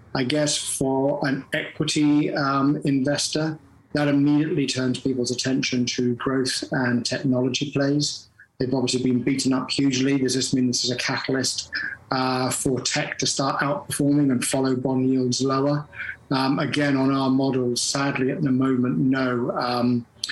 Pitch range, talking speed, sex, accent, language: 125-145 Hz, 155 wpm, male, British, English